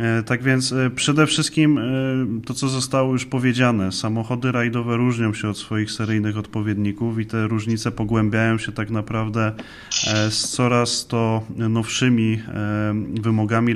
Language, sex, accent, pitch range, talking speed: Polish, male, native, 110-125 Hz, 125 wpm